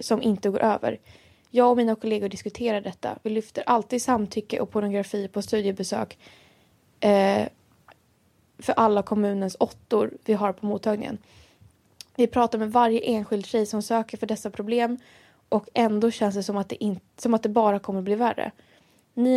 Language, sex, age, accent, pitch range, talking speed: English, female, 20-39, Swedish, 200-230 Hz, 155 wpm